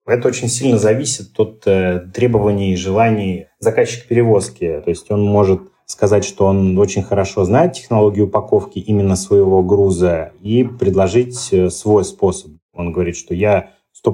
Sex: male